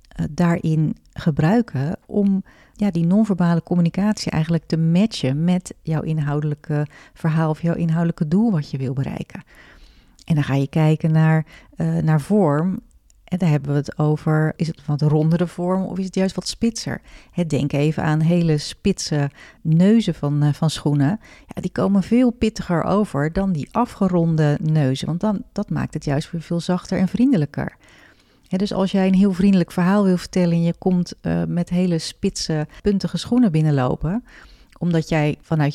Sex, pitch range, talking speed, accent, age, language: female, 155-190 Hz, 165 wpm, Dutch, 40-59, Dutch